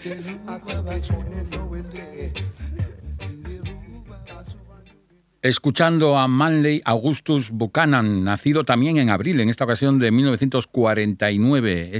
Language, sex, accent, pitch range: Spanish, male, Spanish, 100-130 Hz